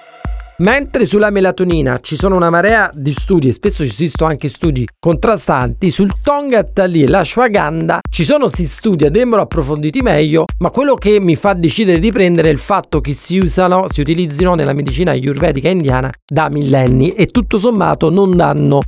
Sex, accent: male, native